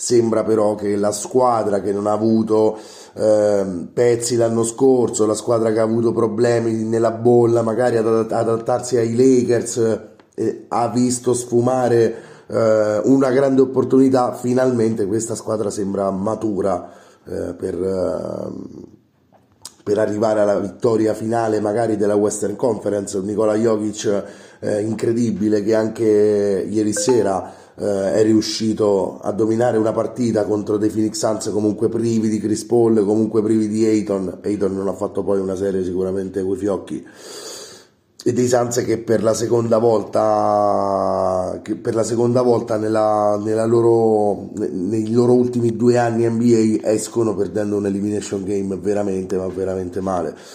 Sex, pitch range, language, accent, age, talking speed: male, 105-115 Hz, Italian, native, 30-49, 140 wpm